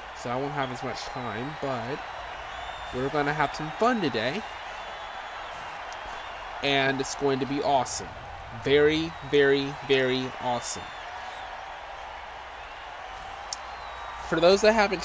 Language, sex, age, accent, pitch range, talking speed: English, male, 20-39, American, 120-155 Hz, 115 wpm